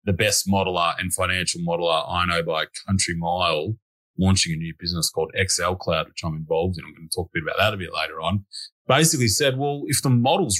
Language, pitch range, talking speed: English, 95-125 Hz, 225 wpm